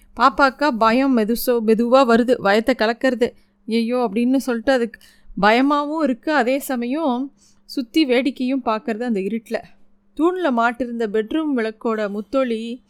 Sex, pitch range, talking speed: female, 215-260 Hz, 115 wpm